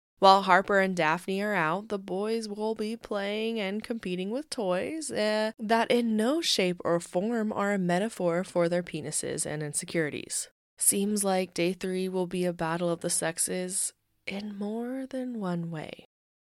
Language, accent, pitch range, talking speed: English, American, 180-225 Hz, 165 wpm